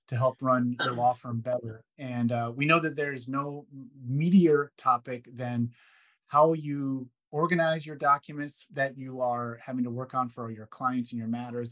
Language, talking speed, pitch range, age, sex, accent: English, 180 wpm, 120-145 Hz, 30-49, male, American